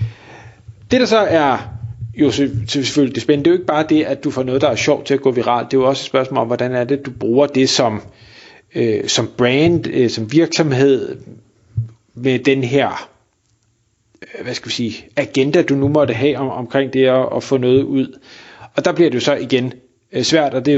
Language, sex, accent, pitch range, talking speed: Danish, male, native, 120-145 Hz, 220 wpm